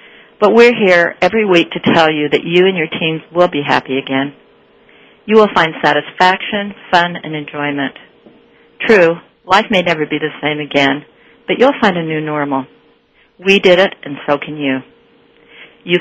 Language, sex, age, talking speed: English, female, 50-69, 170 wpm